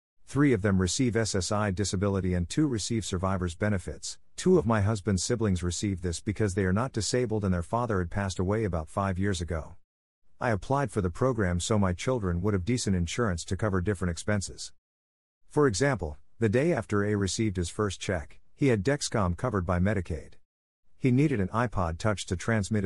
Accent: American